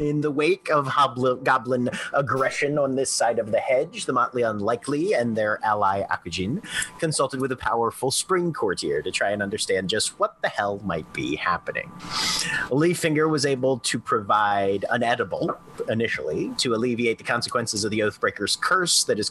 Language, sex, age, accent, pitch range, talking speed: English, male, 30-49, American, 115-170 Hz, 170 wpm